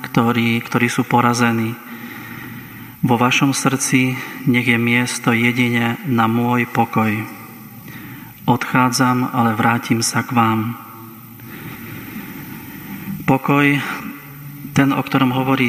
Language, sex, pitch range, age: Slovak, male, 115-130 Hz, 30-49